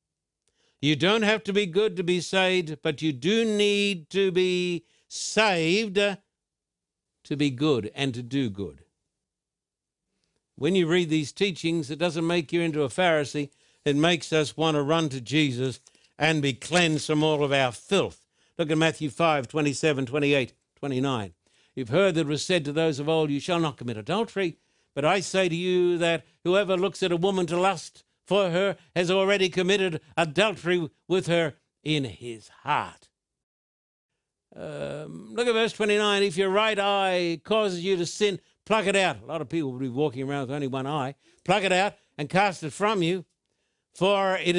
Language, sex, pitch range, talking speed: English, male, 145-190 Hz, 180 wpm